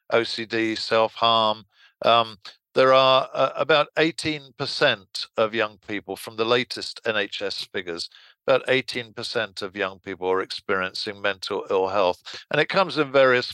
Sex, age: male, 50-69